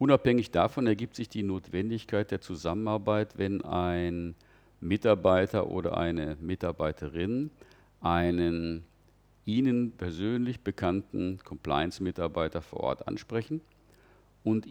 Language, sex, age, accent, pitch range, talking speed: German, male, 50-69, German, 85-110 Hz, 95 wpm